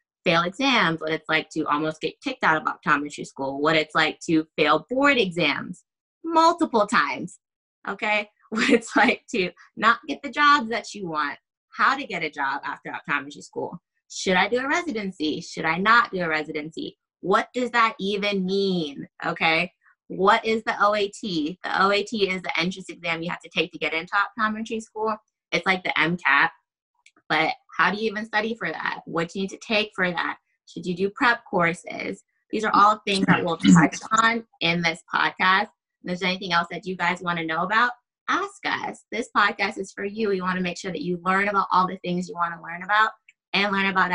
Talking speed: 205 wpm